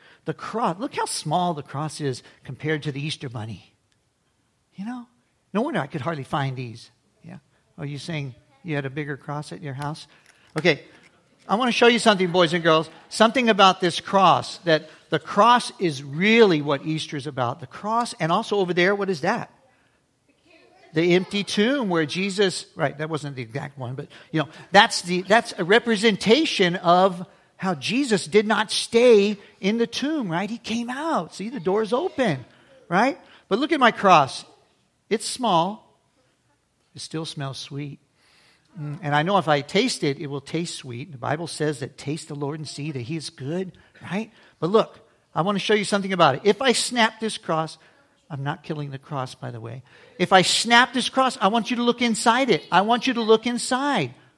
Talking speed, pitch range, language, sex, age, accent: 200 wpm, 150-220 Hz, English, male, 50-69, American